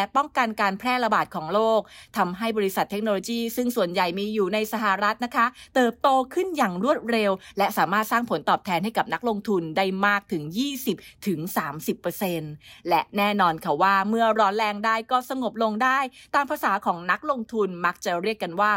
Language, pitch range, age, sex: English, 195-245 Hz, 20-39, female